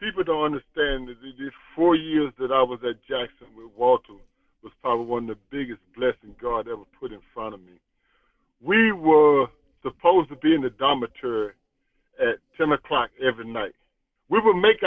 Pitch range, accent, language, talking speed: 135-180 Hz, American, English, 180 wpm